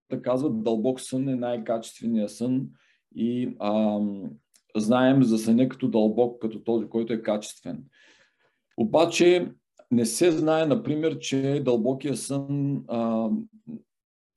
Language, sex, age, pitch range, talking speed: Bulgarian, male, 40-59, 110-135 Hz, 115 wpm